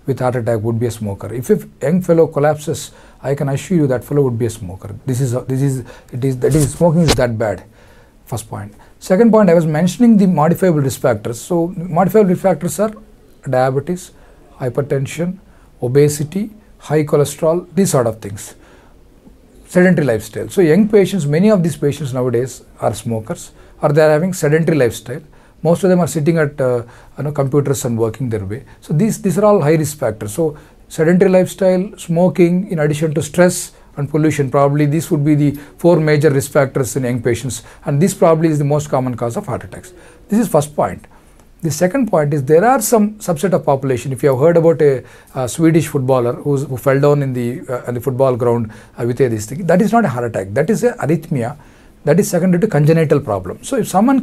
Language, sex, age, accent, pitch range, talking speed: English, male, 40-59, Indian, 125-175 Hz, 210 wpm